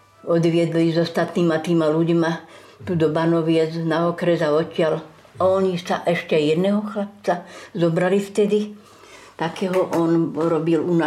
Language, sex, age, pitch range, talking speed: Slovak, female, 60-79, 165-195 Hz, 120 wpm